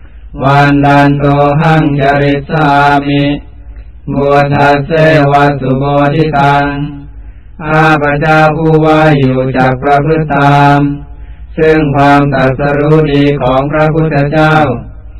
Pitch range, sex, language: 135-145 Hz, male, Thai